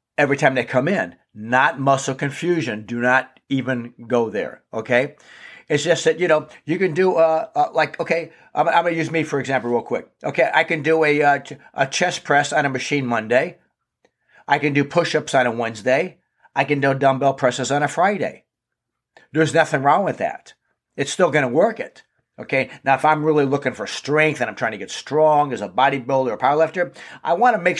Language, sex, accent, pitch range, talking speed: English, male, American, 125-160 Hz, 215 wpm